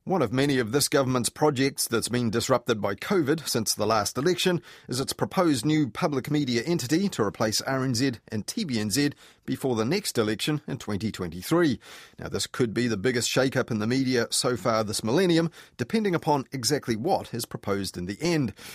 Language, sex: English, male